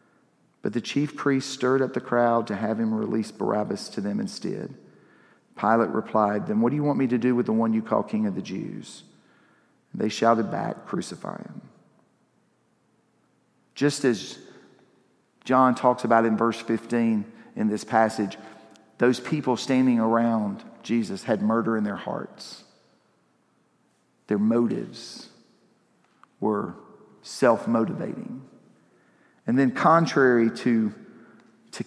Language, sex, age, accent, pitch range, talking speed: English, male, 40-59, American, 115-145 Hz, 130 wpm